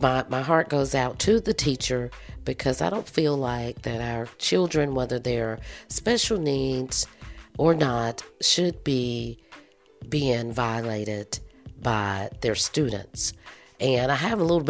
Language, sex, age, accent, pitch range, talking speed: English, female, 50-69, American, 115-140 Hz, 140 wpm